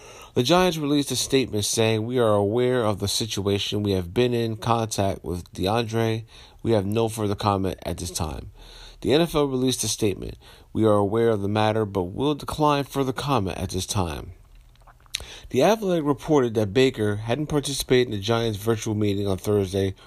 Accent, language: American, English